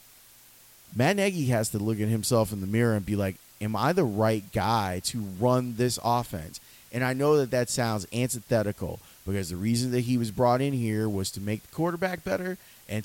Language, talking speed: English, 205 wpm